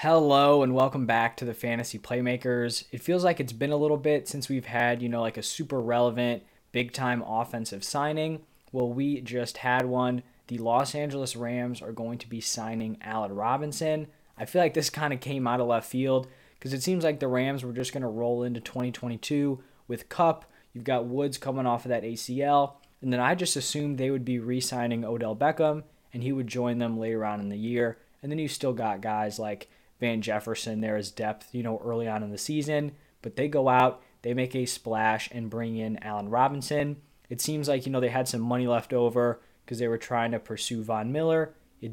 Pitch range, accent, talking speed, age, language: 115-140 Hz, American, 215 wpm, 20-39, English